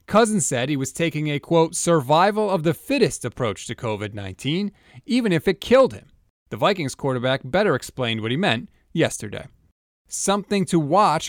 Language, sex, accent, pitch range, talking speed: English, male, American, 120-170 Hz, 165 wpm